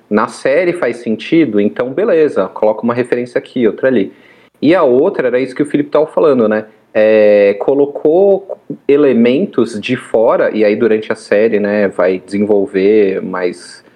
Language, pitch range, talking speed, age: Portuguese, 110-170 Hz, 160 wpm, 30-49